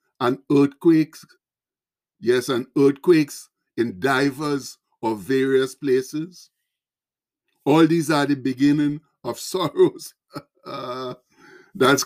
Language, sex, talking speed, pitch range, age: English, male, 90 wpm, 135-165 Hz, 60-79